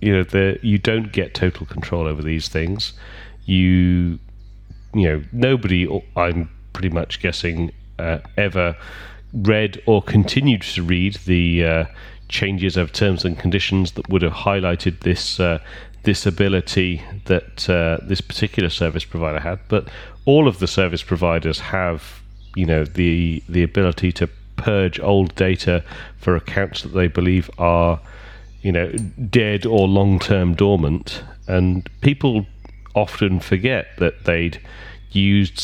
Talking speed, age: 140 wpm, 30-49